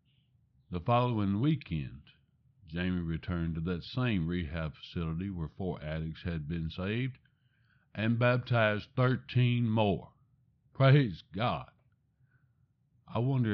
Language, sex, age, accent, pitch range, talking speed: English, male, 60-79, American, 90-125 Hz, 105 wpm